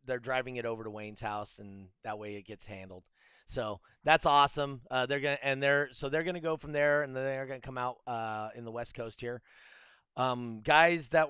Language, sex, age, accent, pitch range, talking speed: English, male, 30-49, American, 125-160 Hz, 225 wpm